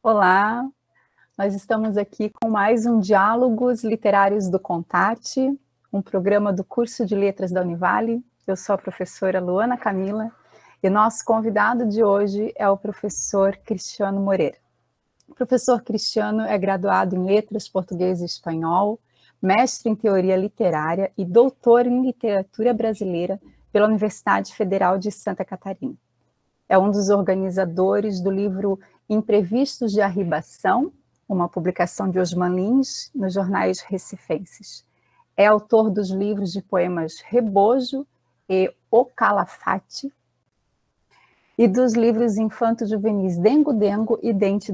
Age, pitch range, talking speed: 30-49, 190-225 Hz, 130 wpm